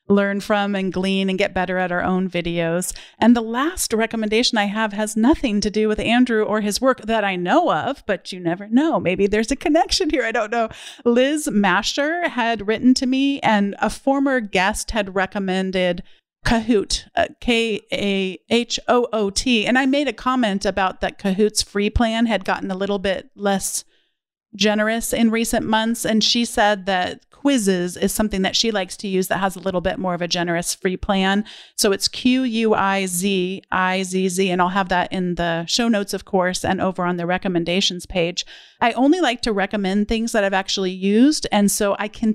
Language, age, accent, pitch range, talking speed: English, 40-59, American, 195-235 Hz, 185 wpm